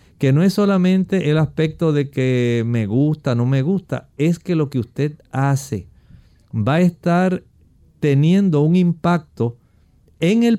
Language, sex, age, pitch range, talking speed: Spanish, male, 50-69, 120-165 Hz, 155 wpm